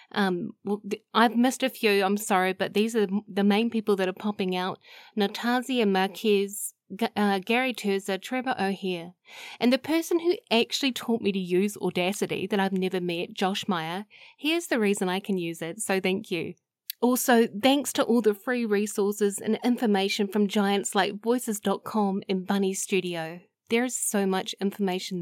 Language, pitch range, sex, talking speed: English, 195-235 Hz, female, 170 wpm